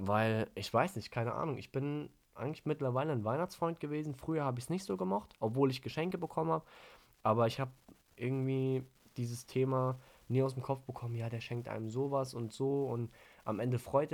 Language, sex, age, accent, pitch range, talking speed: German, male, 20-39, German, 105-135 Hz, 200 wpm